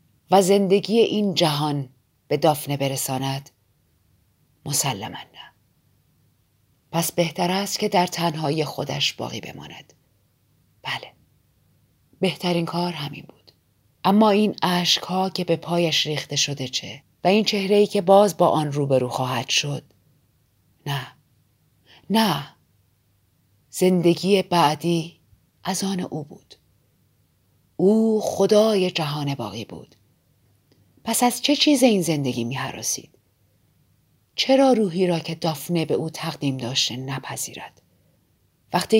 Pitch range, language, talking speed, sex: 140-195 Hz, Persian, 115 wpm, female